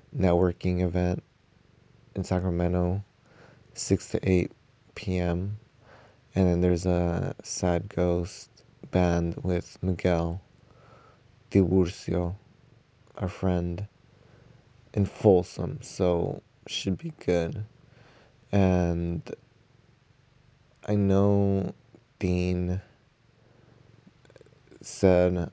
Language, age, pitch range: English, 20-39, 90-120 Hz